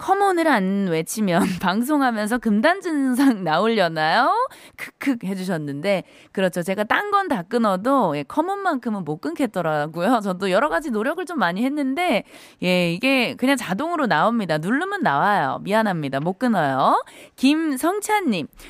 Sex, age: female, 20-39